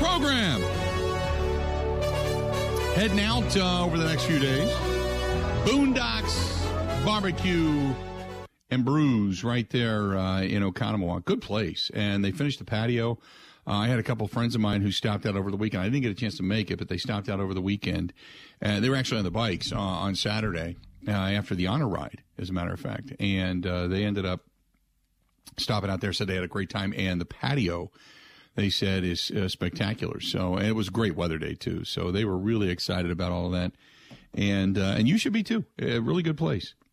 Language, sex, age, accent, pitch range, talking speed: English, male, 50-69, American, 90-120 Hz, 205 wpm